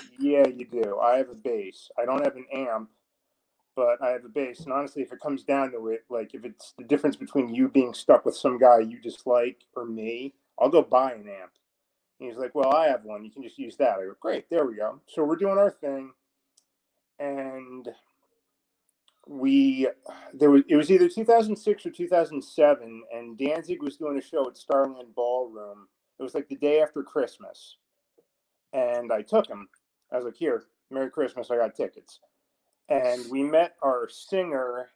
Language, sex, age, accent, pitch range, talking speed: English, male, 30-49, American, 120-155 Hz, 195 wpm